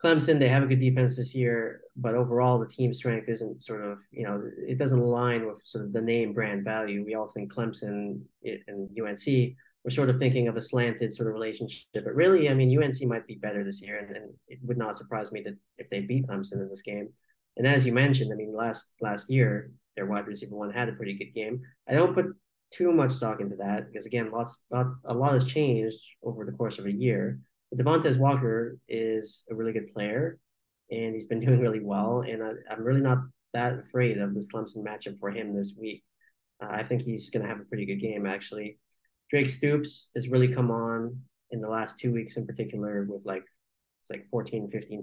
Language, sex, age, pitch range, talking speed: English, male, 30-49, 105-125 Hz, 225 wpm